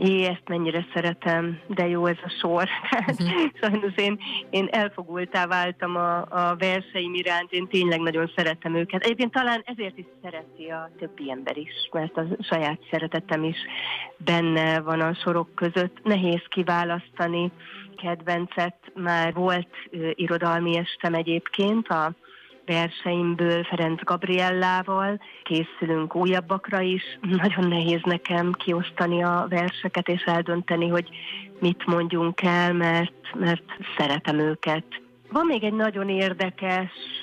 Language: Hungarian